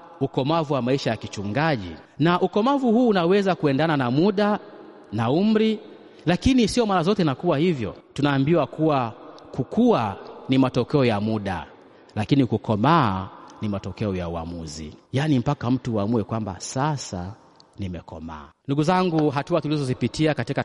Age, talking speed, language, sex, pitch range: 30-49, 135 wpm, Swahili, male, 110-160 Hz